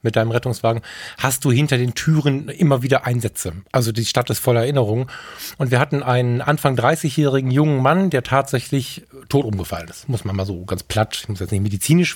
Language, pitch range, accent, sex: German, 125-155 Hz, German, male